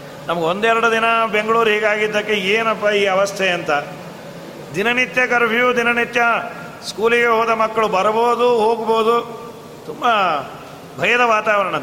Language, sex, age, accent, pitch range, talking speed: Kannada, male, 30-49, native, 185-230 Hz, 100 wpm